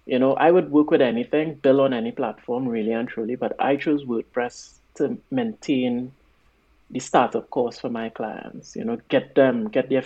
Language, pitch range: English, 115-150 Hz